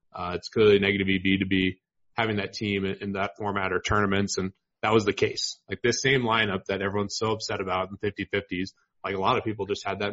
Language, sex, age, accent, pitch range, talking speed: English, male, 30-49, American, 100-110 Hz, 245 wpm